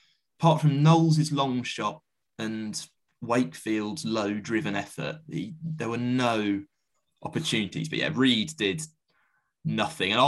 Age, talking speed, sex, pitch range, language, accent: 20-39, 115 wpm, male, 105-150 Hz, English, British